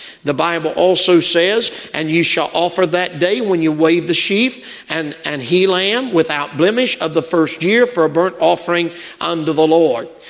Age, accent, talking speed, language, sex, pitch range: 50-69, American, 185 wpm, English, male, 165-200 Hz